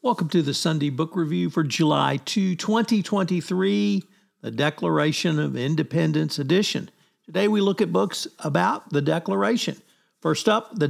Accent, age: American, 50-69